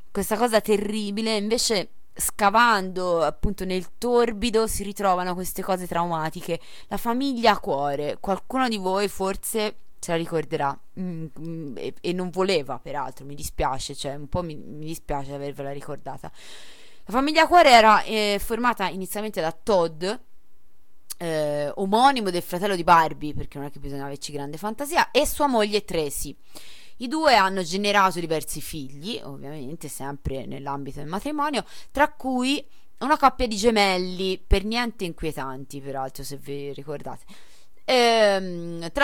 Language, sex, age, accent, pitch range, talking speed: Italian, female, 20-39, native, 150-220 Hz, 140 wpm